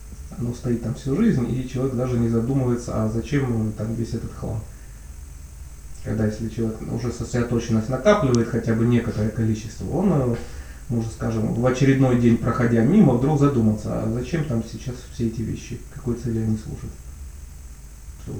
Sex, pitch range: male, 100-120 Hz